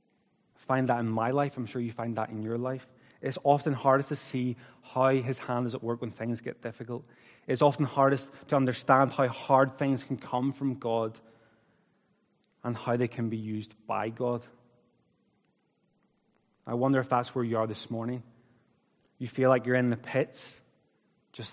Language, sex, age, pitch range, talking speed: English, male, 20-39, 125-145 Hz, 180 wpm